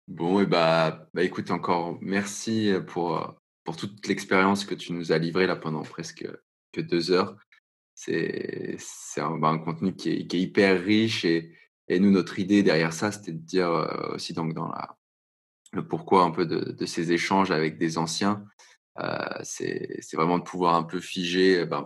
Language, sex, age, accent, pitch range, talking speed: French, male, 20-39, French, 85-95 Hz, 185 wpm